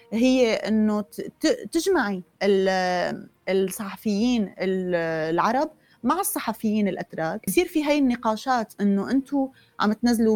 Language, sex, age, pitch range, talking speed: Arabic, female, 20-39, 185-235 Hz, 95 wpm